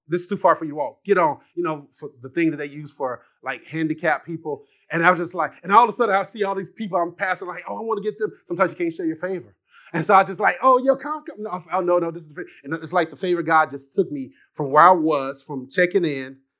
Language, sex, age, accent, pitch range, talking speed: English, male, 30-49, American, 150-195 Hz, 315 wpm